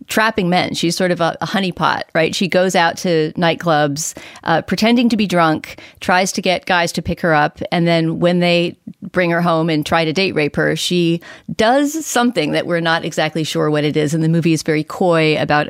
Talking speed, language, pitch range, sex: 220 wpm, English, 160-195 Hz, female